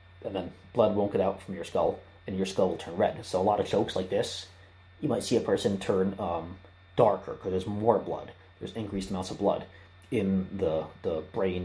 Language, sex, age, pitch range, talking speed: English, male, 30-49, 95-105 Hz, 220 wpm